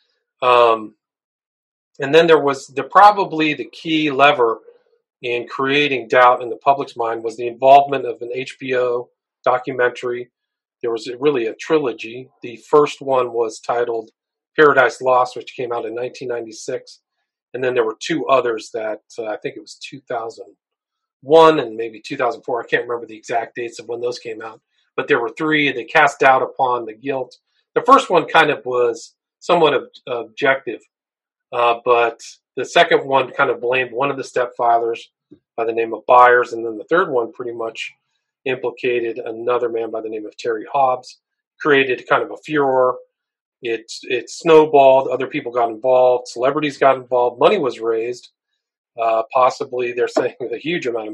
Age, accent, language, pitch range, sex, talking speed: 40-59, American, English, 120-155 Hz, male, 170 wpm